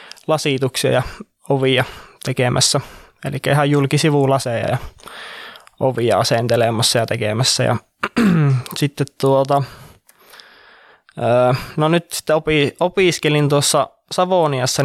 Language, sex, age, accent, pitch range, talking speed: Finnish, male, 20-39, native, 130-145 Hz, 90 wpm